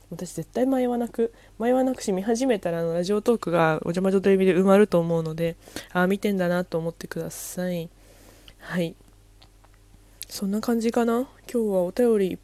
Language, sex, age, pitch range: Japanese, female, 20-39, 175-240 Hz